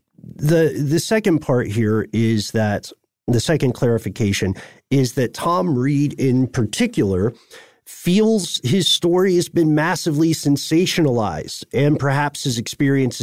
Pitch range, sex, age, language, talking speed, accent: 115-155 Hz, male, 40-59, English, 125 wpm, American